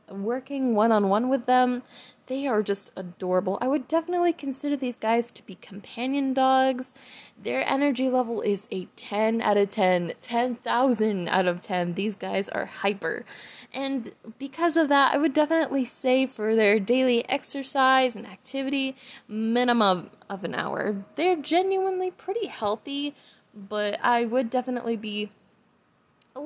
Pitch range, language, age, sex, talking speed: 210-265 Hz, English, 10-29, female, 145 wpm